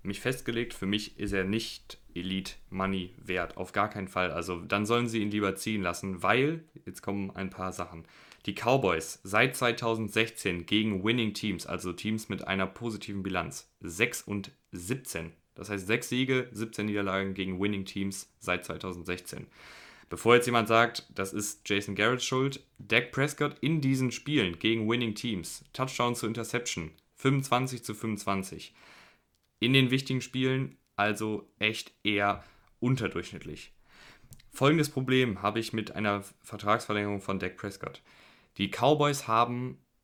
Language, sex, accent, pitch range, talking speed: German, male, German, 95-115 Hz, 150 wpm